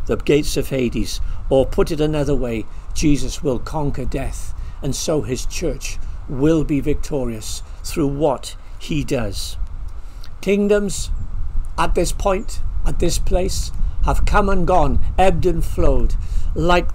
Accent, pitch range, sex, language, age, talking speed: British, 95-160 Hz, male, English, 60-79, 140 wpm